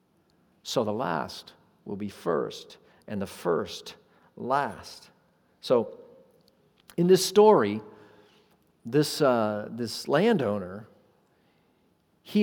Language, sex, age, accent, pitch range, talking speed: English, male, 50-69, American, 115-185 Hz, 90 wpm